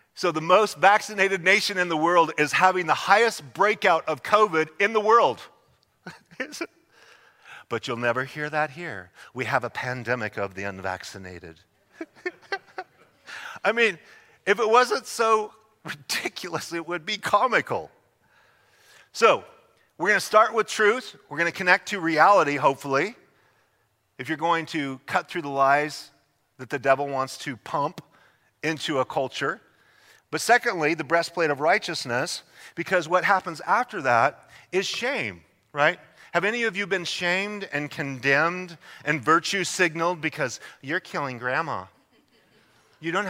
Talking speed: 145 wpm